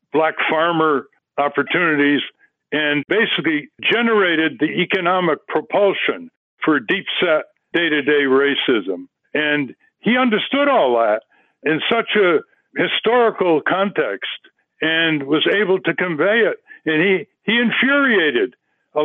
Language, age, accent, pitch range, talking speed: English, 60-79, American, 150-215 Hz, 105 wpm